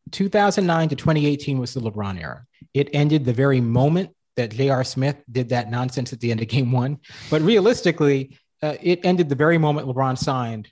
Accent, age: American, 30-49